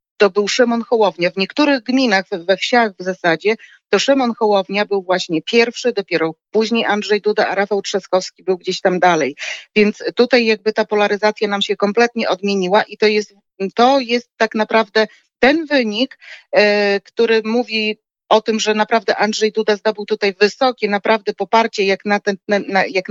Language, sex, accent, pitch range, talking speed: Polish, female, native, 195-225 Hz, 165 wpm